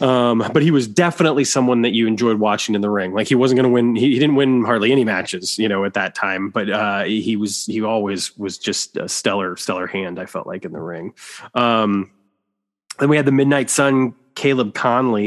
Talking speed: 230 wpm